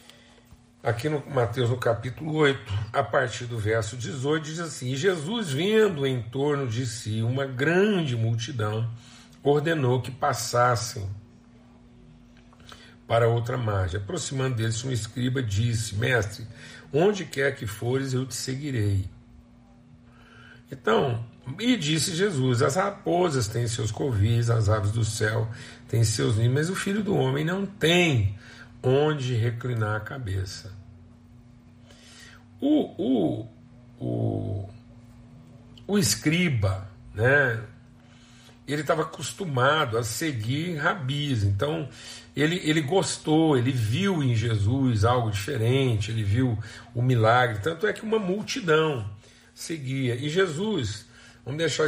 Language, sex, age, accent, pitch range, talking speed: Portuguese, male, 50-69, Brazilian, 115-145 Hz, 120 wpm